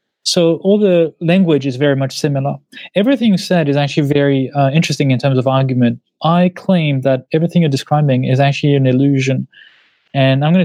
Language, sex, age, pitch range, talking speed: English, male, 20-39, 135-165 Hz, 185 wpm